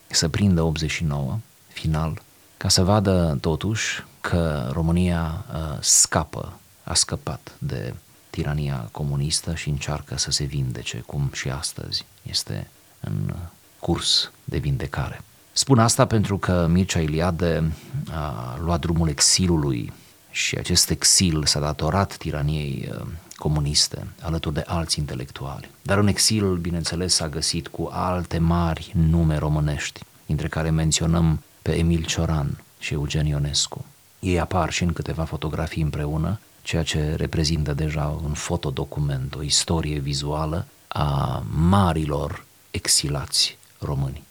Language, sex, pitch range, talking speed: Romanian, male, 75-90 Hz, 120 wpm